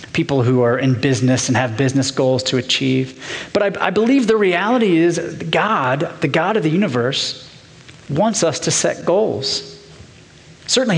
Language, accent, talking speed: English, American, 165 wpm